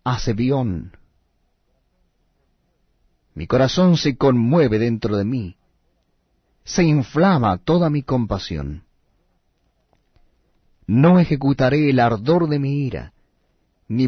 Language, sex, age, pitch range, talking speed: Spanish, male, 40-59, 95-140 Hz, 90 wpm